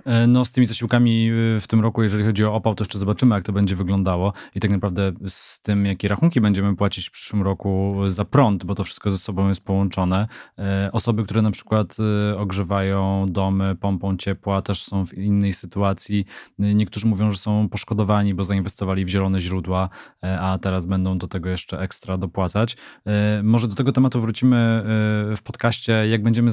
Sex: male